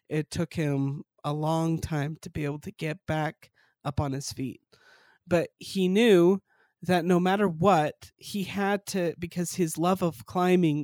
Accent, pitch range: American, 150-180 Hz